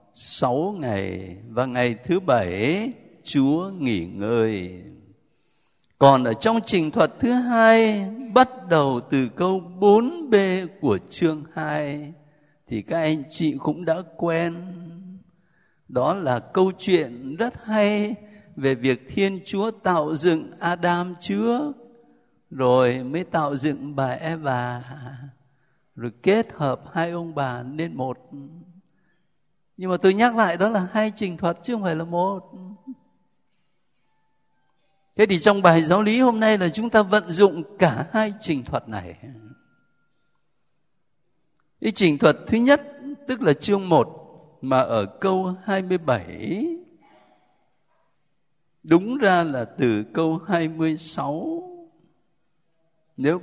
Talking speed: 125 wpm